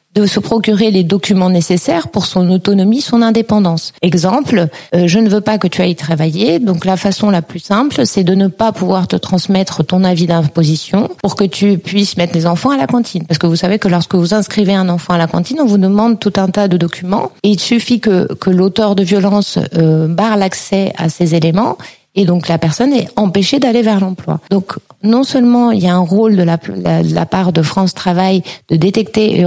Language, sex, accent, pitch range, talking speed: French, female, French, 175-210 Hz, 225 wpm